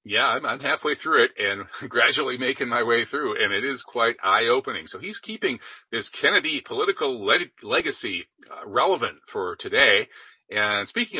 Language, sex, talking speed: English, male, 160 wpm